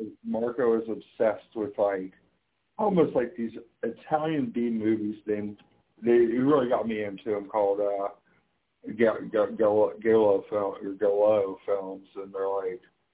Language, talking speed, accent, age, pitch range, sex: English, 130 wpm, American, 60-79, 100-125 Hz, male